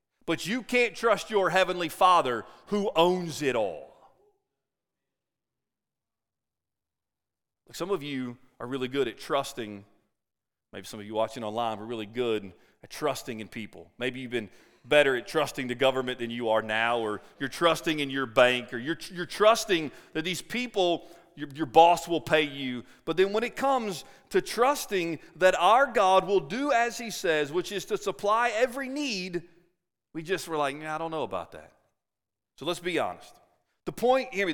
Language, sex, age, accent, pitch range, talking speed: English, male, 40-59, American, 135-195 Hz, 175 wpm